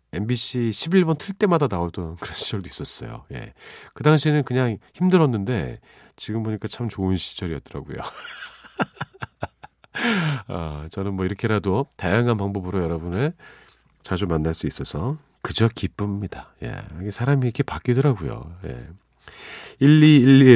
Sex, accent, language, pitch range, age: male, native, Korean, 90-140 Hz, 40-59